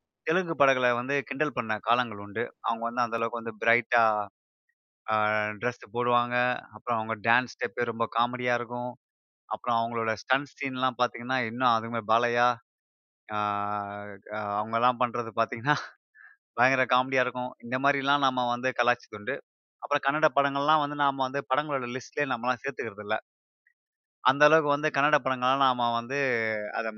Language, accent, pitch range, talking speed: Tamil, native, 120-140 Hz, 130 wpm